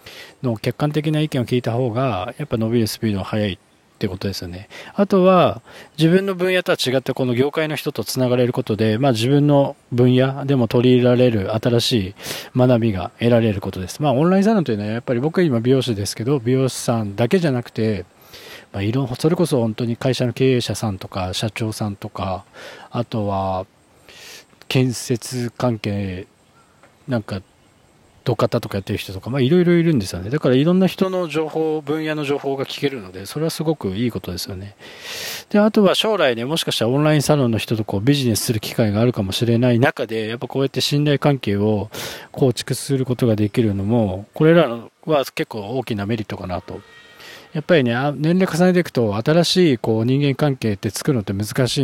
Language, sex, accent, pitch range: Japanese, male, native, 110-145 Hz